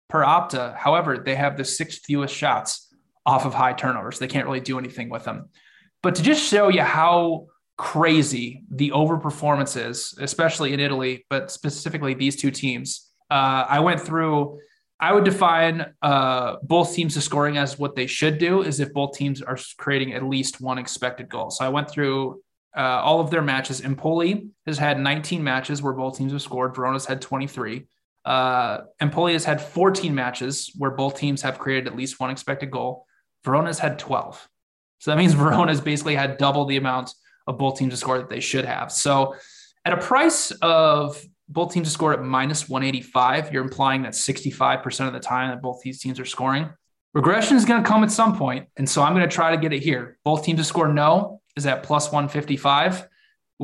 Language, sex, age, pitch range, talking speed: English, male, 20-39, 130-160 Hz, 200 wpm